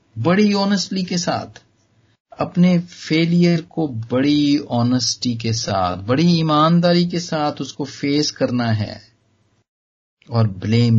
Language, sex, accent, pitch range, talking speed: Hindi, male, native, 110-160 Hz, 115 wpm